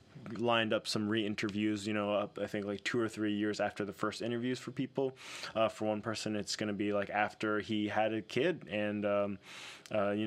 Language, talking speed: English, 230 wpm